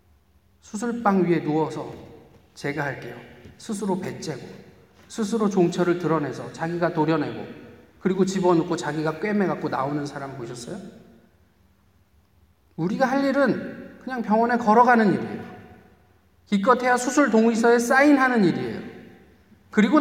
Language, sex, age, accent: Korean, male, 40-59, native